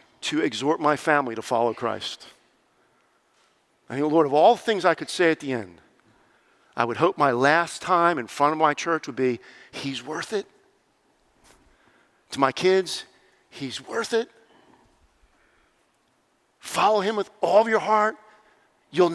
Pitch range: 165-260 Hz